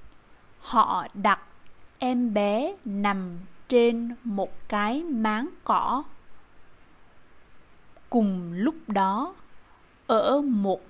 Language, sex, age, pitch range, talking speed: Vietnamese, female, 20-39, 210-255 Hz, 85 wpm